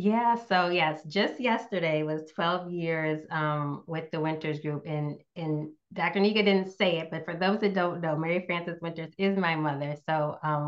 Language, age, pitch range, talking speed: English, 20-39, 155-185 Hz, 190 wpm